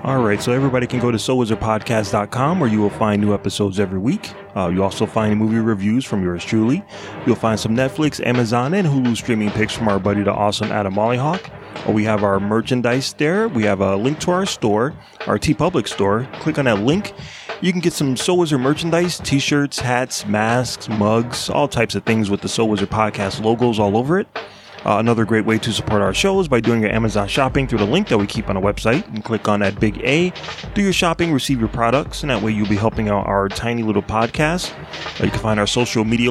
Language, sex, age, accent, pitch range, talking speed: English, male, 20-39, American, 105-135 Hz, 230 wpm